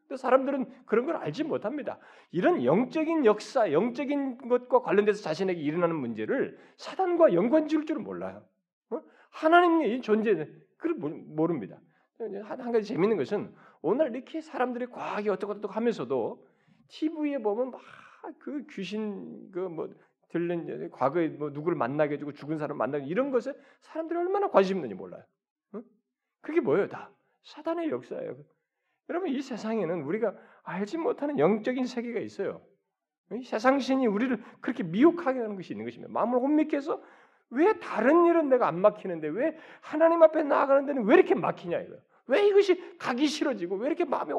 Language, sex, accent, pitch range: Korean, male, native, 205-315 Hz